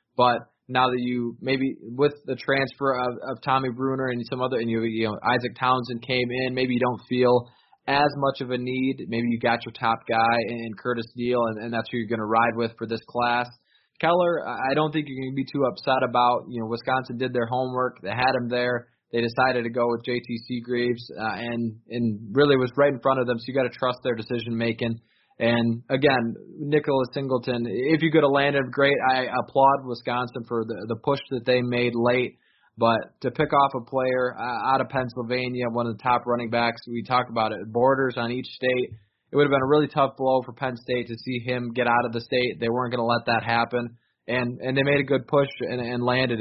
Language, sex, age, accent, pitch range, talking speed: English, male, 20-39, American, 120-130 Hz, 235 wpm